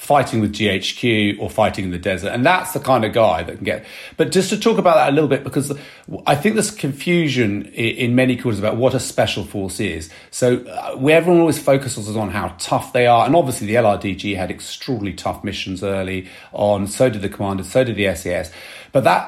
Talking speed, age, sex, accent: 220 wpm, 40-59, male, British